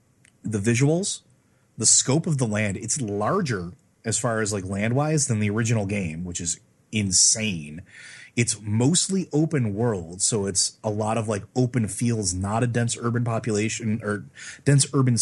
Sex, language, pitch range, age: male, English, 105-130 Hz, 30-49